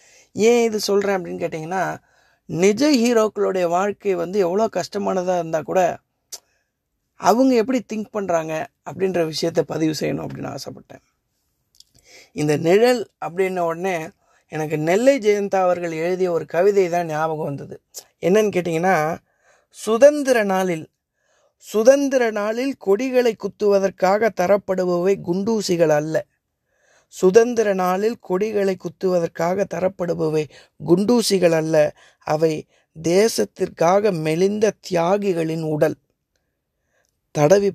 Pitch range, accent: 160-200 Hz, native